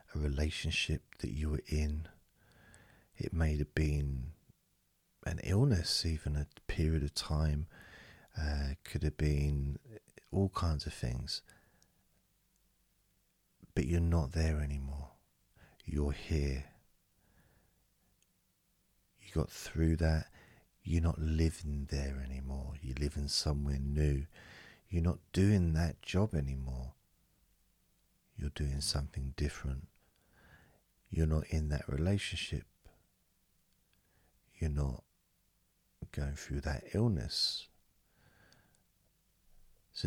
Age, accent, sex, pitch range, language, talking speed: 40-59, British, male, 70-90 Hz, English, 100 wpm